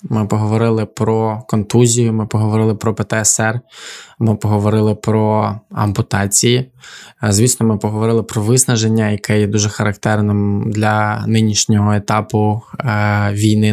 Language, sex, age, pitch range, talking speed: Ukrainian, male, 20-39, 105-115 Hz, 110 wpm